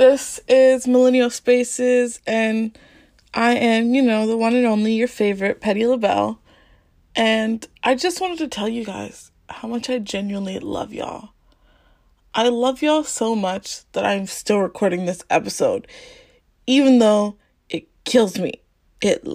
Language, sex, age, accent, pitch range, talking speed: English, female, 20-39, American, 205-260 Hz, 150 wpm